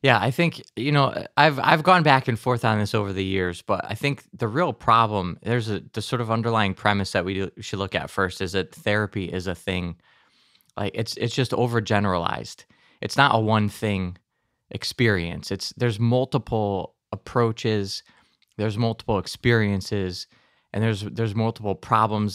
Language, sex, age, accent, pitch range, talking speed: English, male, 20-39, American, 100-120 Hz, 175 wpm